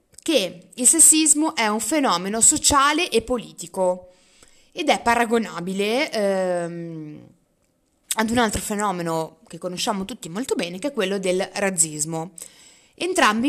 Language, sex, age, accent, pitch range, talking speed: Italian, female, 20-39, native, 190-265 Hz, 125 wpm